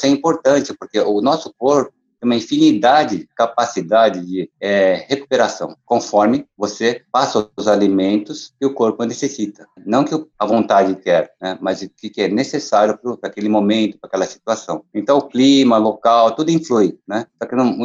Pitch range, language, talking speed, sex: 105-130 Hz, Portuguese, 160 wpm, male